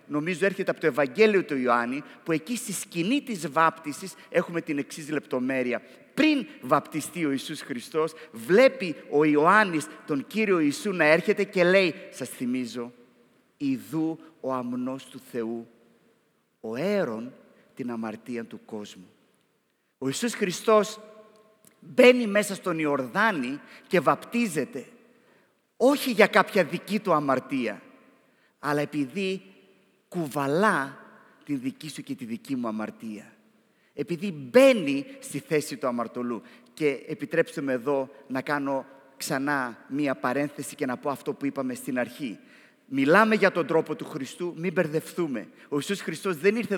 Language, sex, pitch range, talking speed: Greek, male, 140-210 Hz, 135 wpm